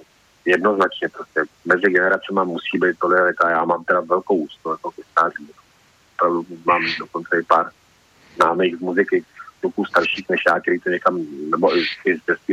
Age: 40-59